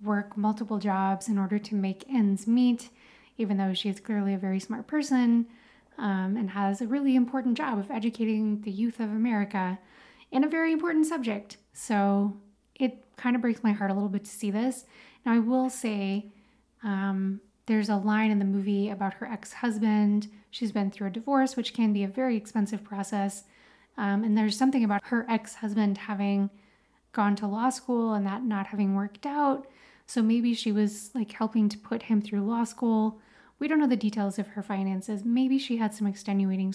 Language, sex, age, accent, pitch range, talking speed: English, female, 30-49, American, 205-245 Hz, 195 wpm